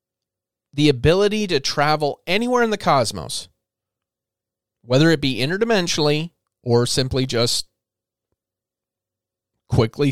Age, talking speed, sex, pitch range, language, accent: 40-59, 95 wpm, male, 110-145 Hz, English, American